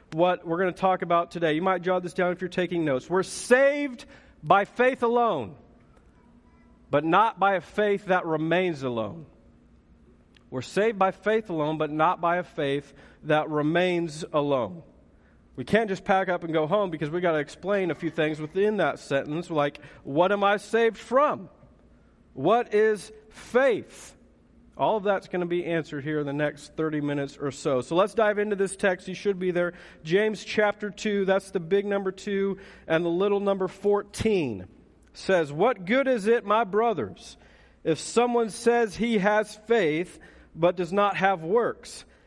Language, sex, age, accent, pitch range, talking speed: English, male, 40-59, American, 165-210 Hz, 180 wpm